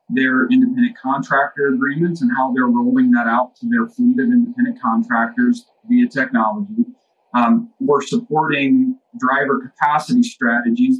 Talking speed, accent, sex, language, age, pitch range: 130 wpm, American, male, English, 40-59, 150-245 Hz